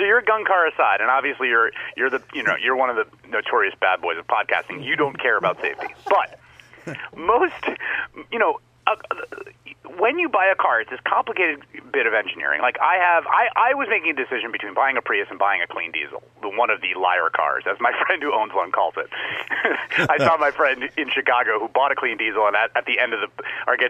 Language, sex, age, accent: English, male, 30-49, American